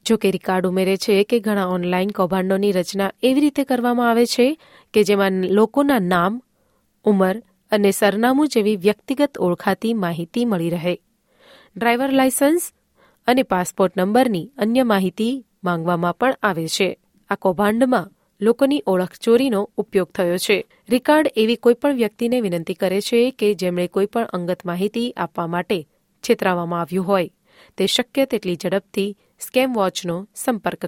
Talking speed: 135 wpm